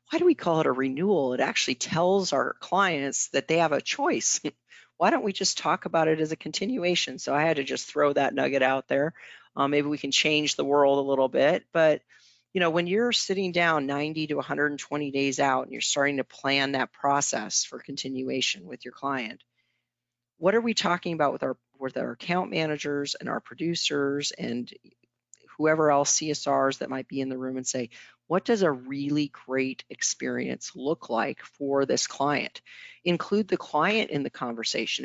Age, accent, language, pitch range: 40-59, American, English, 135-165 Hz